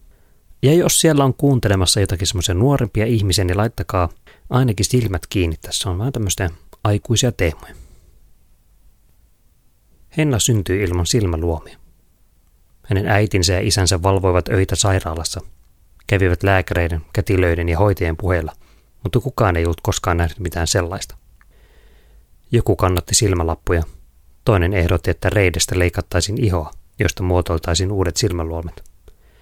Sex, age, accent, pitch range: male, 30-49, native, 85-100 Hz